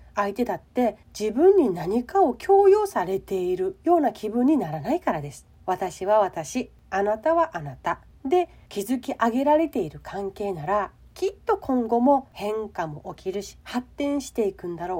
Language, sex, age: Japanese, female, 40-59